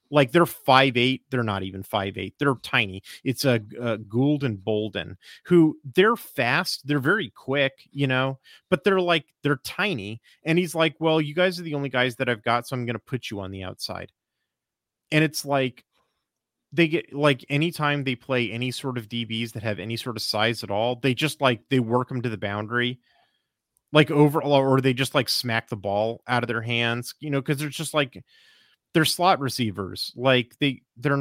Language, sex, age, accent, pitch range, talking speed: English, male, 30-49, American, 115-145 Hz, 205 wpm